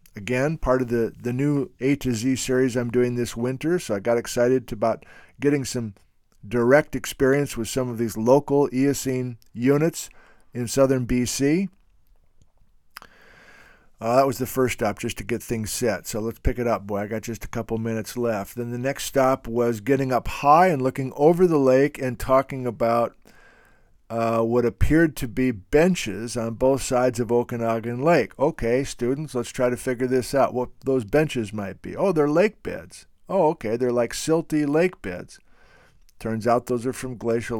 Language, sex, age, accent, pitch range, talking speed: English, male, 50-69, American, 115-135 Hz, 185 wpm